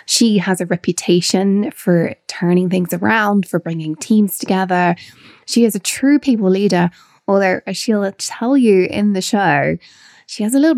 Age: 20-39